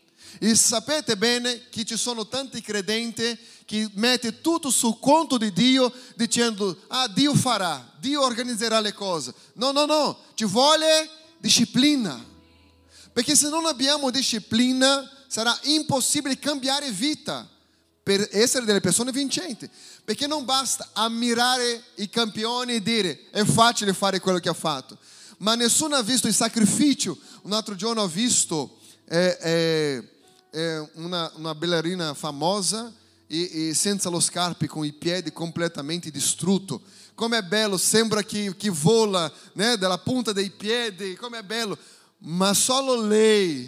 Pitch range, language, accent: 175-245 Hz, Italian, Brazilian